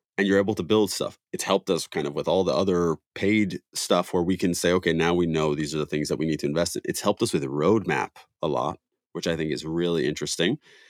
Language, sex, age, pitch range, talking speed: English, male, 30-49, 85-100 Hz, 265 wpm